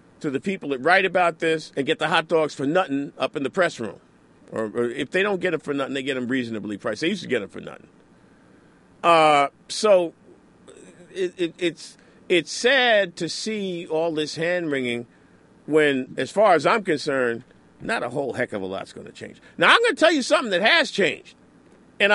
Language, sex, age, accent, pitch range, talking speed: English, male, 50-69, American, 155-240 Hz, 215 wpm